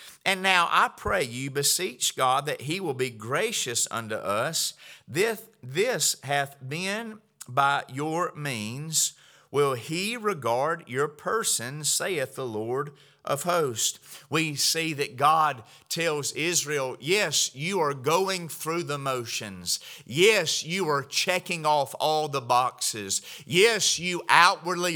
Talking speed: 130 wpm